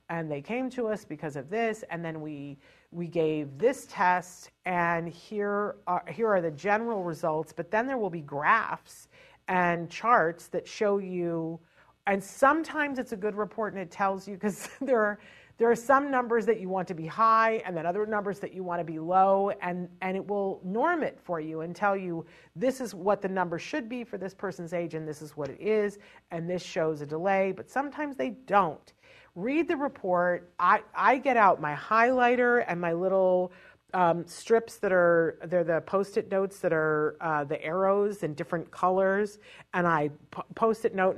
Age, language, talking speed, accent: 40-59, English, 200 wpm, American